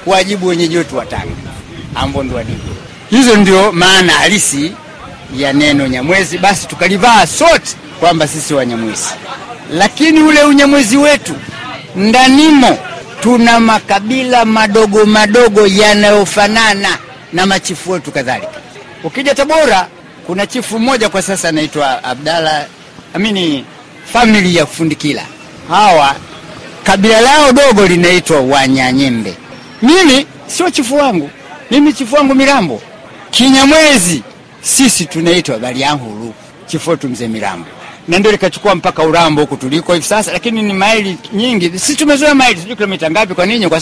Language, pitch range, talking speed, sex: Swahili, 155-225 Hz, 120 wpm, male